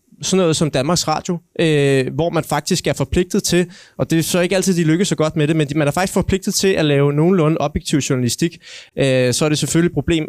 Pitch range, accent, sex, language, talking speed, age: 145-185 Hz, native, male, Danish, 235 wpm, 20-39